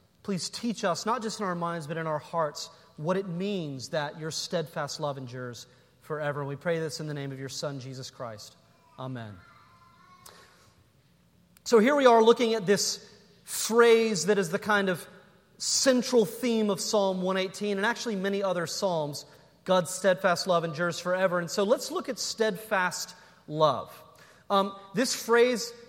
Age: 30-49